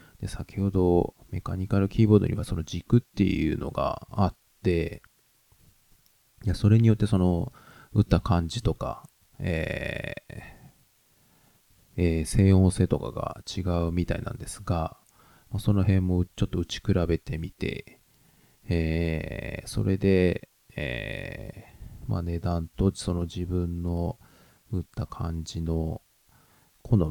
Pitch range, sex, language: 85-105 Hz, male, Japanese